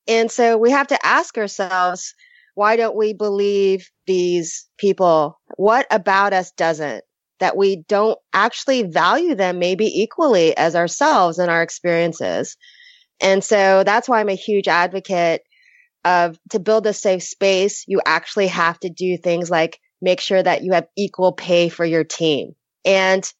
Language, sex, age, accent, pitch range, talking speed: English, female, 30-49, American, 180-230 Hz, 160 wpm